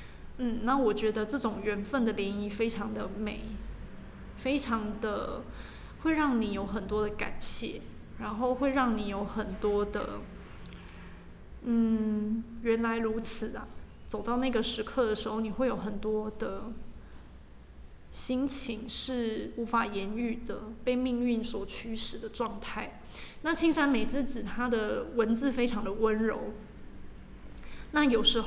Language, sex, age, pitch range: Chinese, female, 20-39, 215-245 Hz